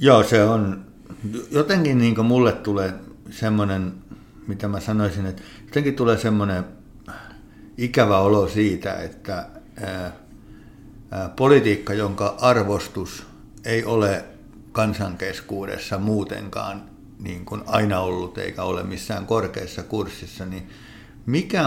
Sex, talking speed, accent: male, 95 wpm, native